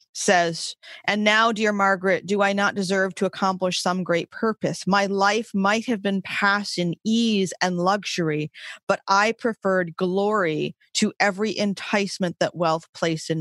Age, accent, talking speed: 30-49, American, 155 wpm